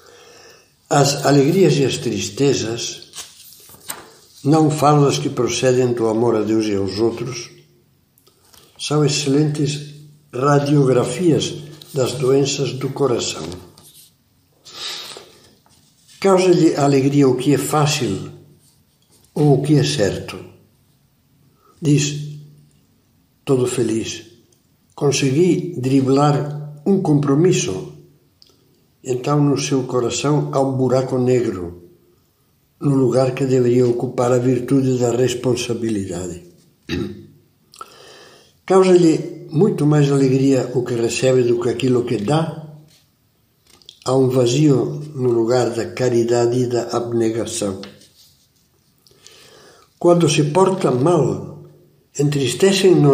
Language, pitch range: Portuguese, 120-150 Hz